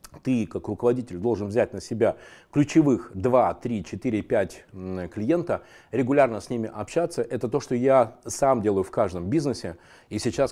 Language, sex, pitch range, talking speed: Russian, male, 105-135 Hz, 160 wpm